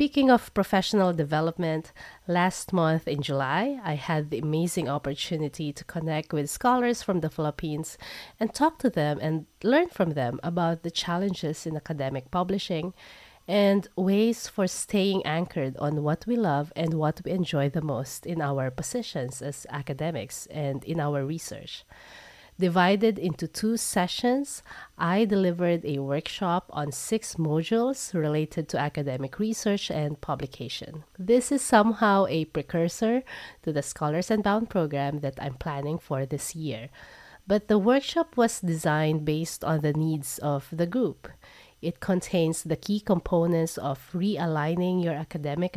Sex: female